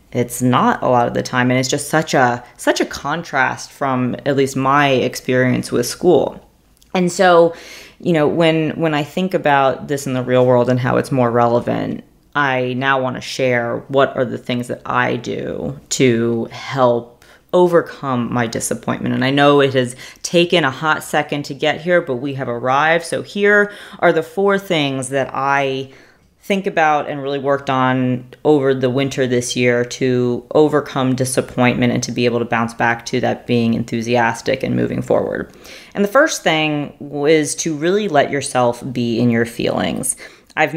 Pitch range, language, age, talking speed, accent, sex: 125-150 Hz, English, 30-49, 185 wpm, American, female